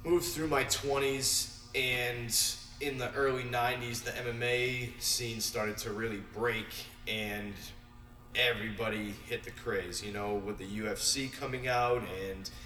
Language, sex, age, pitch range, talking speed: English, male, 20-39, 115-125 Hz, 135 wpm